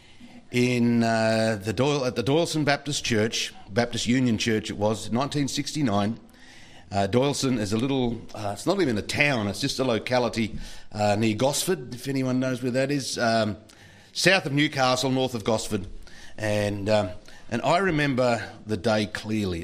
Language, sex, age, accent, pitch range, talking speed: English, male, 50-69, Australian, 105-130 Hz, 165 wpm